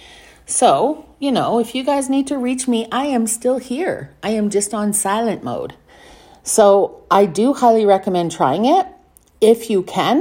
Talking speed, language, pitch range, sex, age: 175 wpm, English, 165-215 Hz, female, 40-59